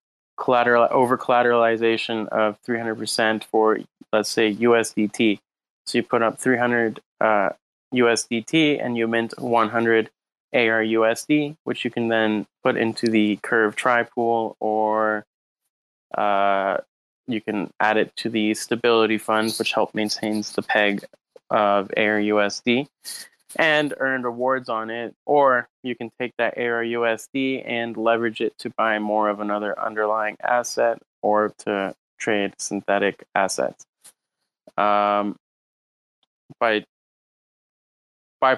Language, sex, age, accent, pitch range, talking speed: English, male, 20-39, American, 105-120 Hz, 120 wpm